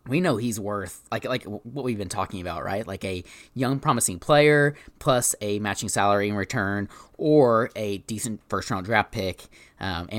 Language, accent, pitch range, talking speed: English, American, 95-120 Hz, 190 wpm